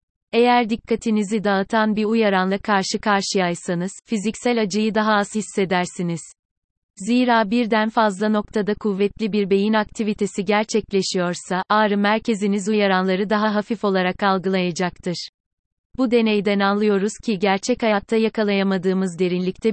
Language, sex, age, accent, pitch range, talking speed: Turkish, female, 30-49, native, 195-220 Hz, 110 wpm